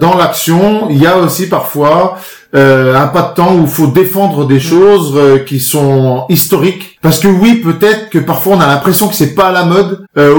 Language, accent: French, French